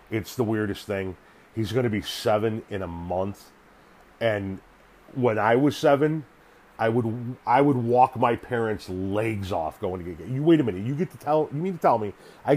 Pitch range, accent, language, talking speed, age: 100-125 Hz, American, English, 205 wpm, 40-59